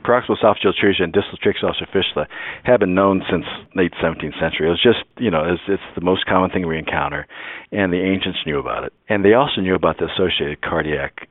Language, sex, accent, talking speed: English, male, American, 220 wpm